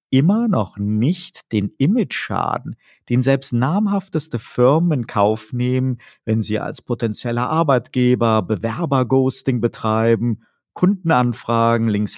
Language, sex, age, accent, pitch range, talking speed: German, male, 50-69, German, 110-130 Hz, 105 wpm